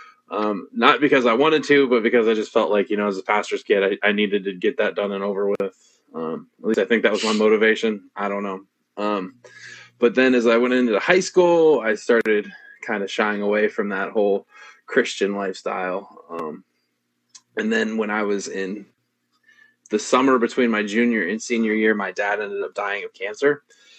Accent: American